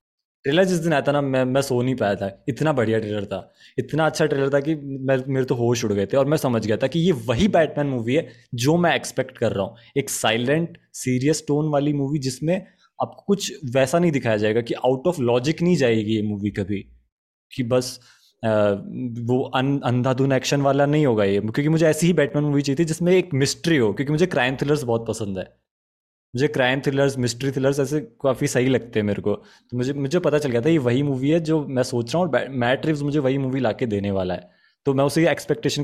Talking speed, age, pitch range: 225 wpm, 20-39, 120-150 Hz